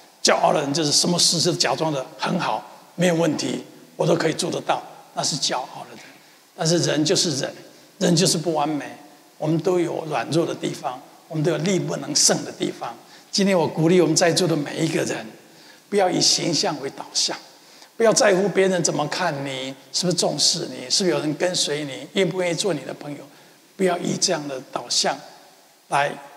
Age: 60-79